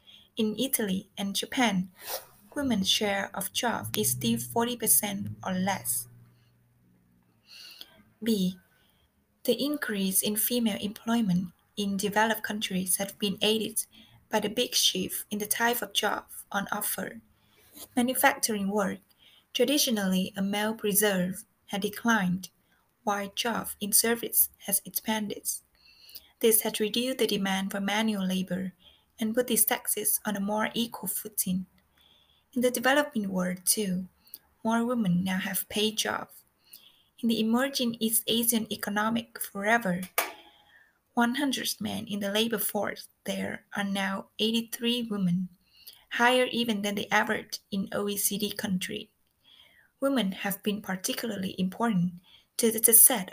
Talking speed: 125 wpm